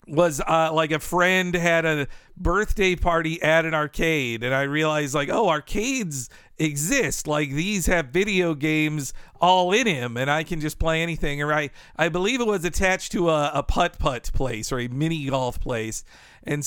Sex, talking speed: male, 185 wpm